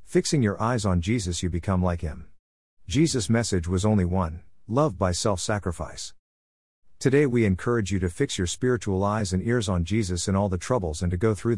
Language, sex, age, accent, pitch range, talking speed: English, male, 50-69, American, 90-115 Hz, 195 wpm